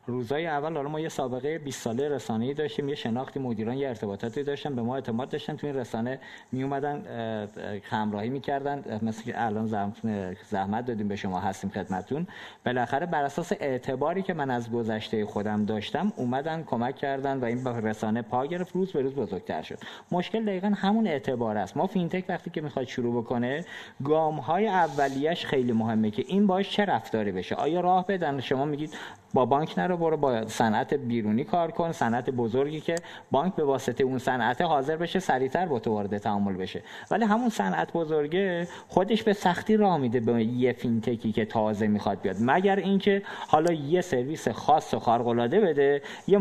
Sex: male